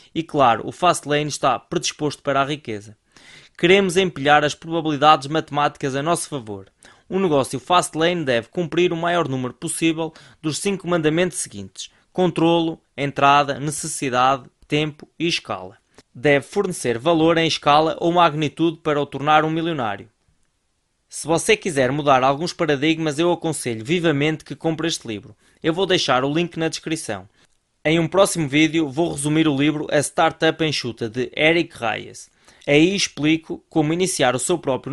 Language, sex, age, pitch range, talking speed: Portuguese, male, 20-39, 140-165 Hz, 155 wpm